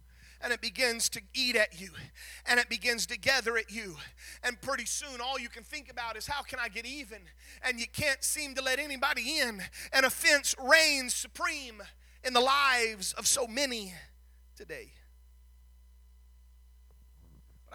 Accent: American